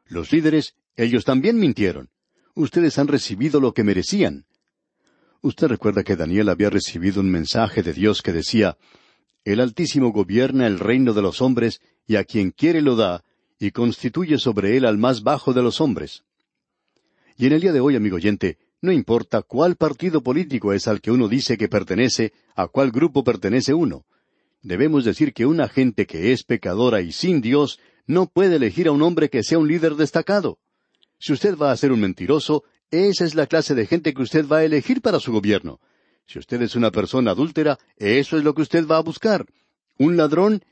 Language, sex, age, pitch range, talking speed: Spanish, male, 60-79, 105-150 Hz, 195 wpm